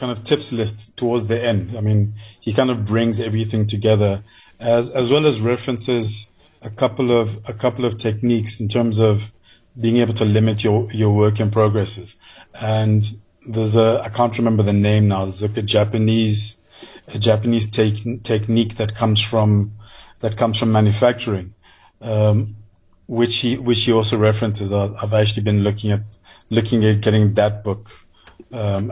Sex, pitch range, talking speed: male, 105-115 Hz, 170 wpm